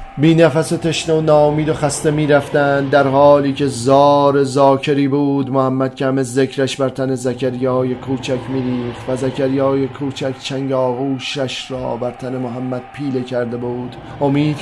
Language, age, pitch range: Persian, 30-49, 130-155 Hz